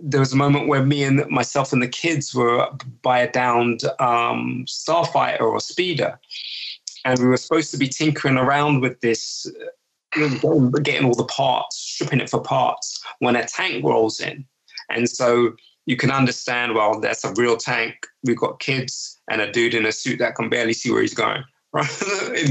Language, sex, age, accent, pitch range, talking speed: English, male, 20-39, British, 120-155 Hz, 190 wpm